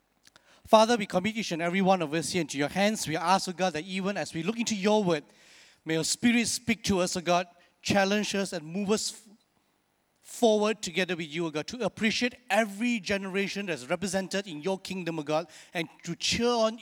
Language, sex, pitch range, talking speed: English, male, 175-225 Hz, 215 wpm